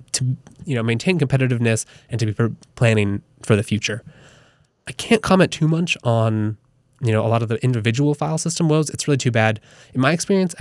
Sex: male